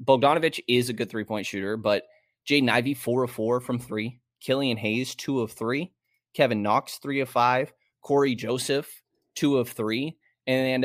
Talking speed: 170 wpm